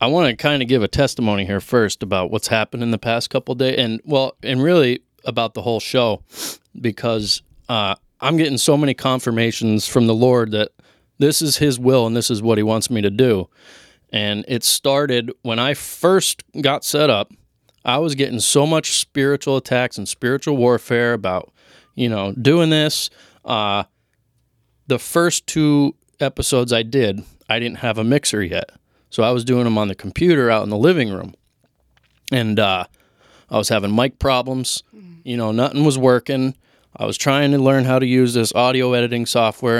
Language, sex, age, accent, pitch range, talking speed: English, male, 20-39, American, 115-140 Hz, 185 wpm